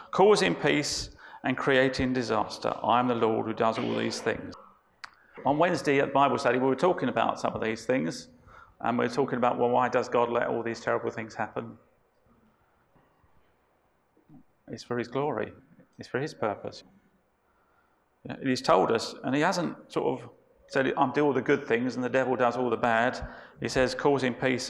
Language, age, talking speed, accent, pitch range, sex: English, 40-59, 185 wpm, British, 115-135 Hz, male